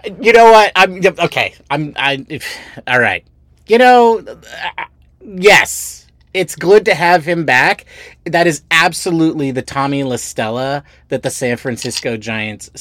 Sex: male